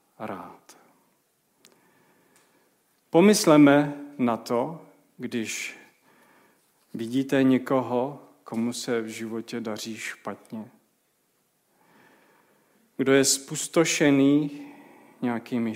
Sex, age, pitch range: male, 40-59, 115-145 Hz